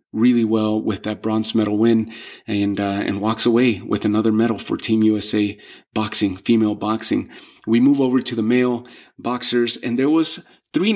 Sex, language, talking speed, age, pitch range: male, English, 175 wpm, 30-49, 110-130 Hz